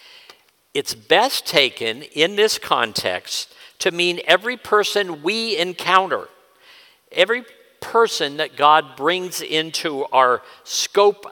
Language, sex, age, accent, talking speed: English, male, 50-69, American, 105 wpm